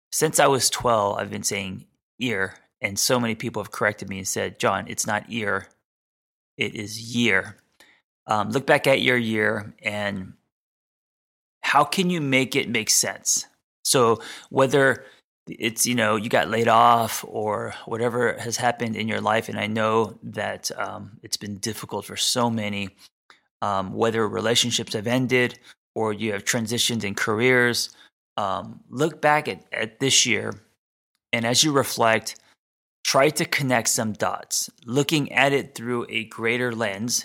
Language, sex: English, male